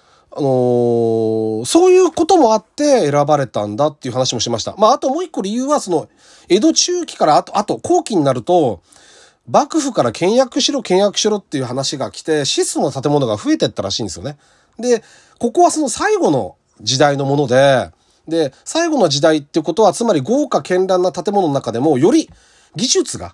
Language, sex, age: Japanese, male, 30-49